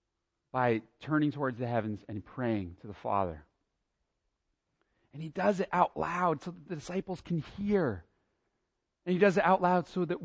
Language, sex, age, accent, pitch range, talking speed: English, male, 30-49, American, 115-170 Hz, 175 wpm